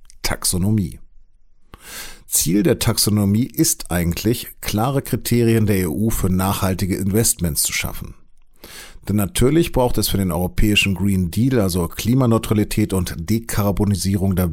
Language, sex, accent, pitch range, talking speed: German, male, German, 90-115 Hz, 120 wpm